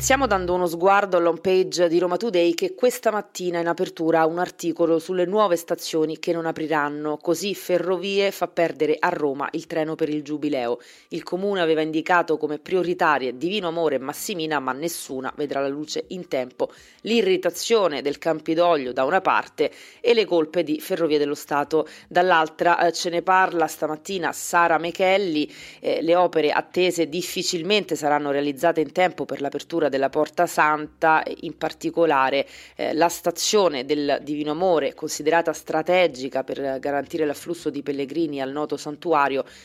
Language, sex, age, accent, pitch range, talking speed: Italian, female, 30-49, native, 150-175 Hz, 155 wpm